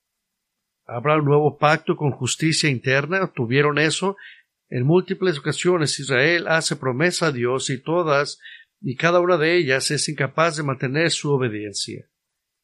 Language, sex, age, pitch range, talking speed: English, male, 50-69, 130-160 Hz, 140 wpm